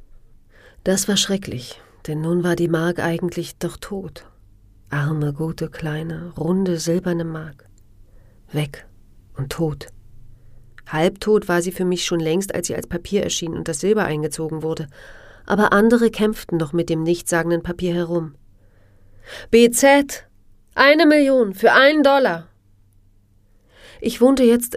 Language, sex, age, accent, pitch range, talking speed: German, female, 40-59, German, 135-180 Hz, 135 wpm